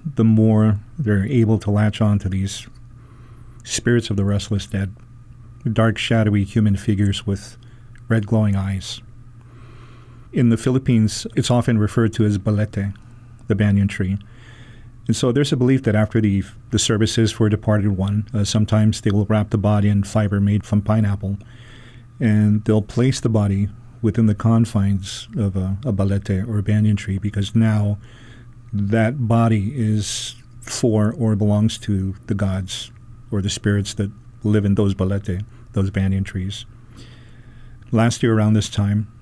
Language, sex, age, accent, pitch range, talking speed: English, male, 40-59, American, 105-120 Hz, 160 wpm